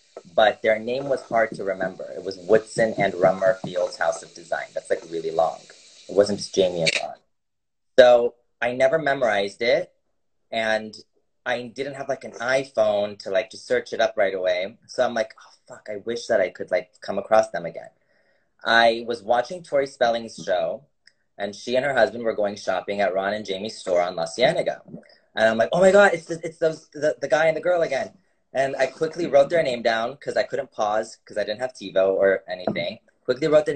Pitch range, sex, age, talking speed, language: 105-135 Hz, male, 30-49, 215 wpm, English